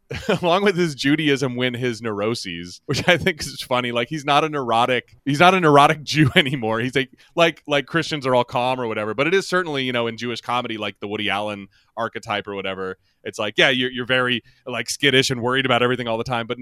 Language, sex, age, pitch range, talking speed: English, male, 30-49, 115-155 Hz, 235 wpm